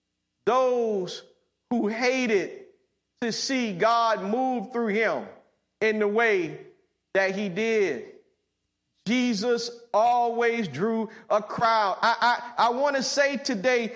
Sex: male